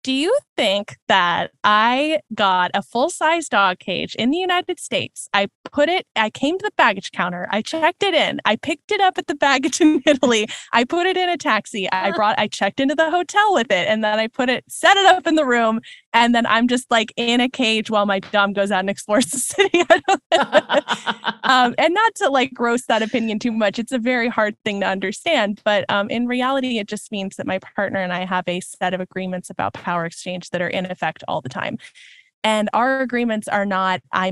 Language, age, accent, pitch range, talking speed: English, 10-29, American, 185-270 Hz, 225 wpm